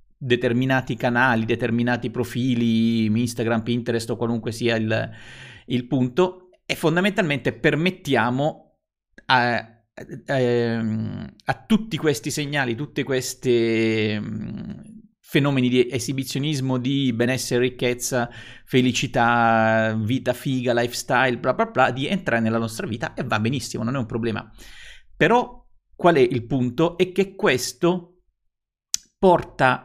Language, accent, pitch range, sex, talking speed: Italian, native, 115-150 Hz, male, 115 wpm